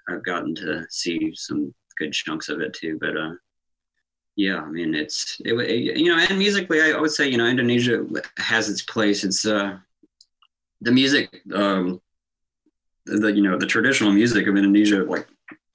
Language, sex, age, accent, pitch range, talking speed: English, male, 20-39, American, 95-110 Hz, 170 wpm